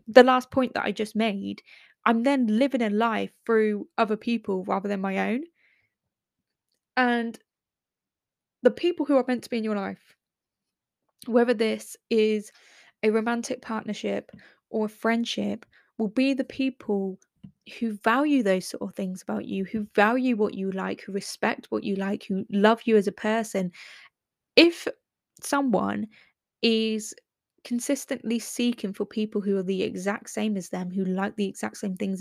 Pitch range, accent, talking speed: 200-240 Hz, British, 160 wpm